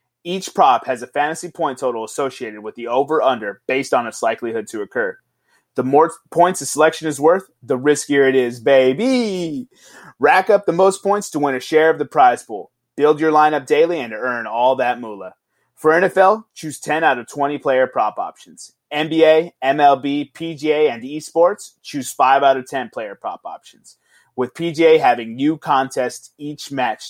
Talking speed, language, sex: 180 wpm, English, male